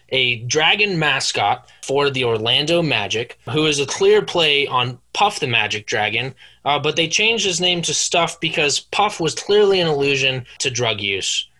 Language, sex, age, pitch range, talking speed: English, male, 20-39, 120-165 Hz, 175 wpm